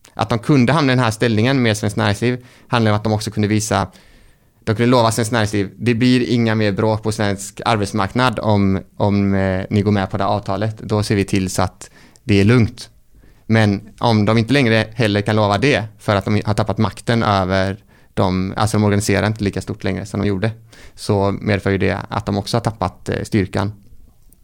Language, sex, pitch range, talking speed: Swedish, male, 100-115 Hz, 215 wpm